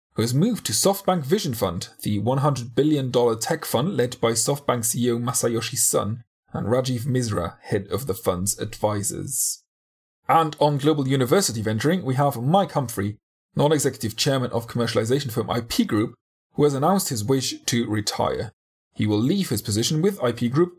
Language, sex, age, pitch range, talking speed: English, male, 30-49, 110-145 Hz, 165 wpm